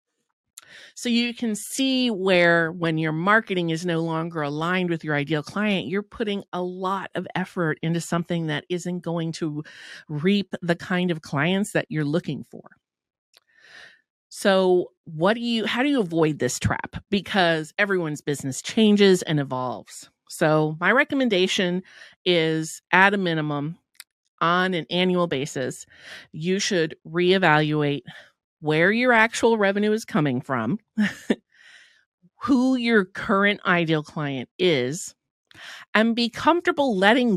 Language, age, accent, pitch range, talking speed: English, 40-59, American, 160-205 Hz, 135 wpm